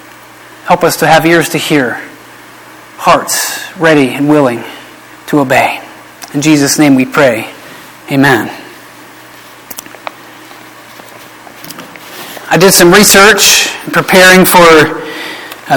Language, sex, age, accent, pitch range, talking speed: English, male, 40-59, American, 160-195 Hz, 100 wpm